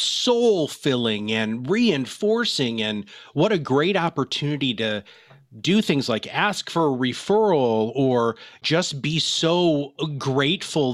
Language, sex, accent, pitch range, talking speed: English, male, American, 120-160 Hz, 120 wpm